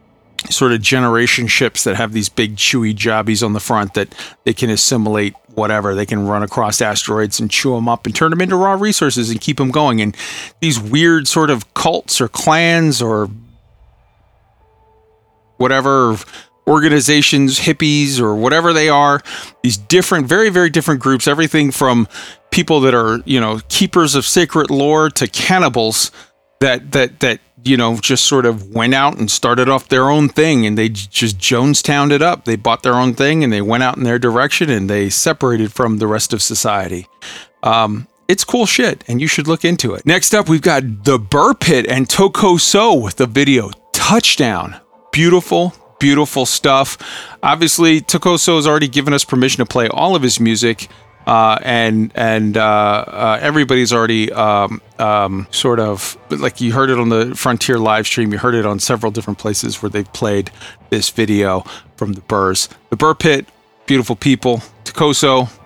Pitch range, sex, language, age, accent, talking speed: 110-145 Hz, male, English, 40-59, American, 175 wpm